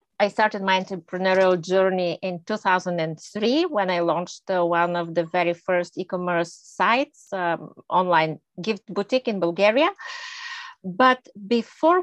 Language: English